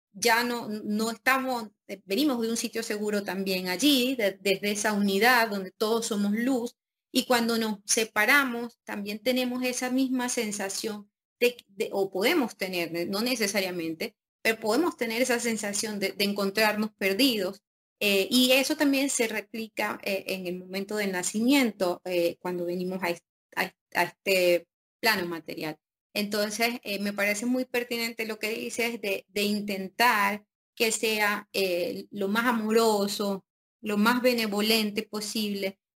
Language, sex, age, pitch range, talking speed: Spanish, female, 30-49, 195-230 Hz, 145 wpm